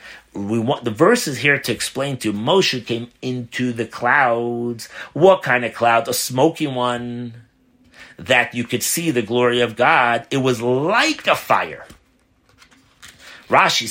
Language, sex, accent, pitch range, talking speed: English, male, American, 120-150 Hz, 155 wpm